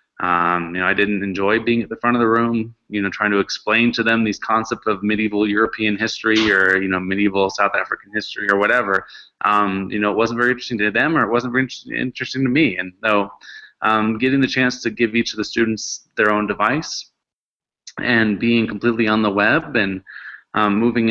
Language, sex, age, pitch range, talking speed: English, male, 20-39, 105-120 Hz, 215 wpm